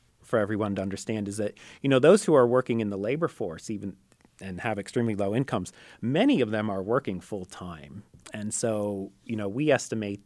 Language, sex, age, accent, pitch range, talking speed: English, male, 30-49, American, 100-120 Hz, 205 wpm